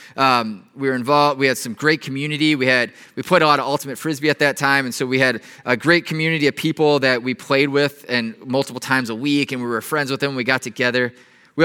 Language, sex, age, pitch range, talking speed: English, male, 20-39, 125-170 Hz, 250 wpm